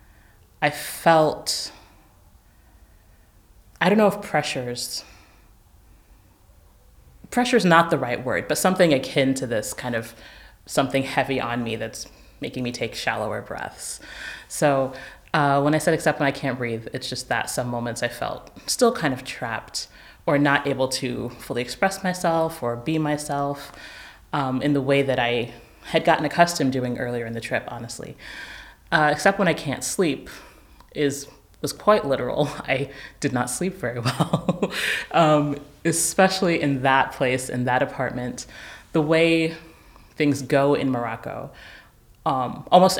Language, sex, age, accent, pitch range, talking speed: English, female, 30-49, American, 120-150 Hz, 150 wpm